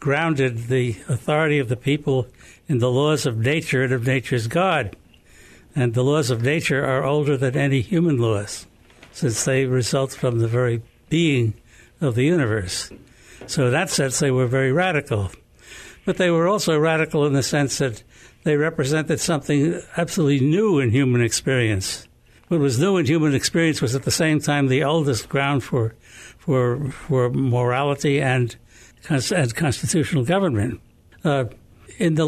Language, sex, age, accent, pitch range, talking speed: English, male, 60-79, American, 125-155 Hz, 160 wpm